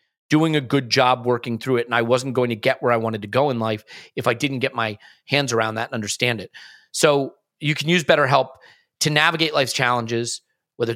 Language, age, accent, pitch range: English, 30-49, American, 130-160 Hz